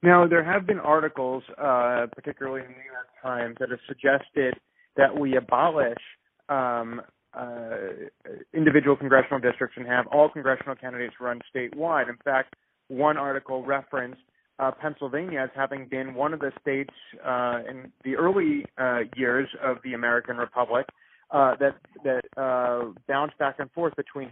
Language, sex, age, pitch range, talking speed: English, male, 30-49, 125-140 Hz, 155 wpm